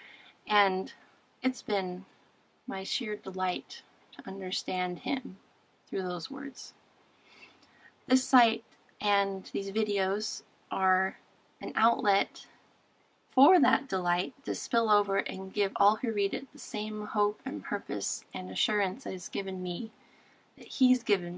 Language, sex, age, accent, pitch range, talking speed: English, female, 30-49, American, 190-225 Hz, 130 wpm